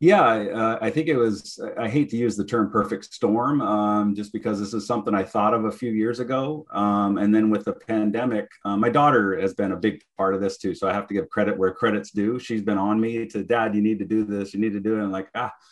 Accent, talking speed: American, 275 wpm